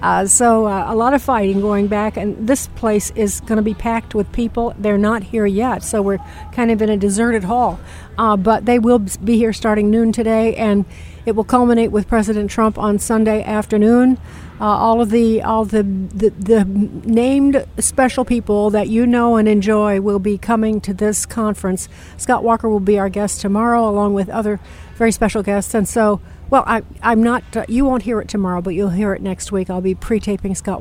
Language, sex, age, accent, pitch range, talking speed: English, female, 60-79, American, 205-230 Hz, 200 wpm